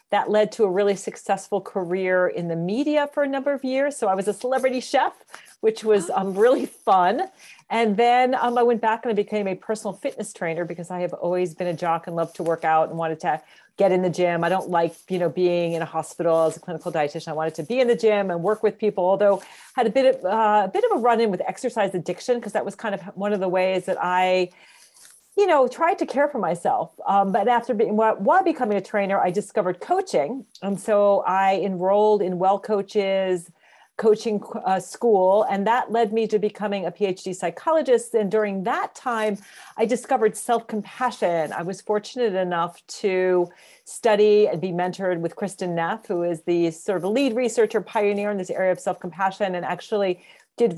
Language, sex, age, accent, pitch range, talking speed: English, female, 40-59, American, 180-230 Hz, 210 wpm